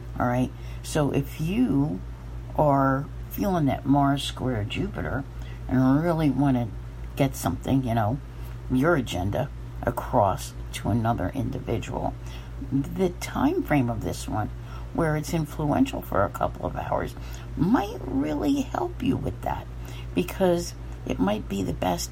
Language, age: English, 60-79